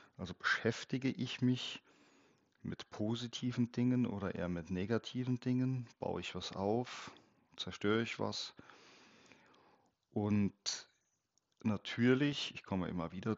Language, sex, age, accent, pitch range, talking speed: German, male, 40-59, German, 95-120 Hz, 110 wpm